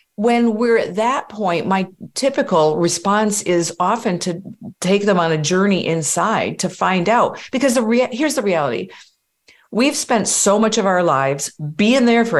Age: 50-69